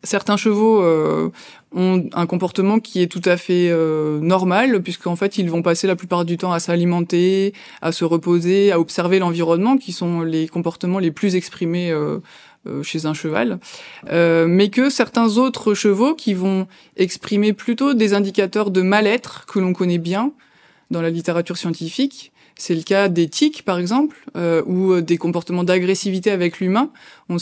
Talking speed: 170 wpm